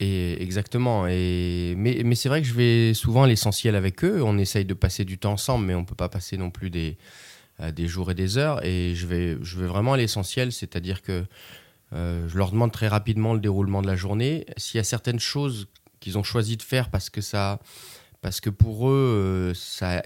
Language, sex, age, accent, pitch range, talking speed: French, male, 30-49, French, 90-110 Hz, 235 wpm